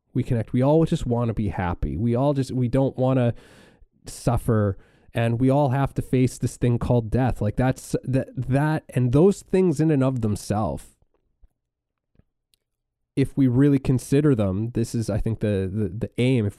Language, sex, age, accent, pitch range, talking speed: English, male, 20-39, American, 105-130 Hz, 190 wpm